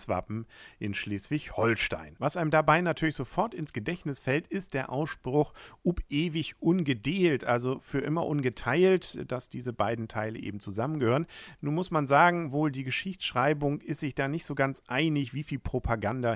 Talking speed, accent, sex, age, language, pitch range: 160 wpm, German, male, 40-59, German, 115-150 Hz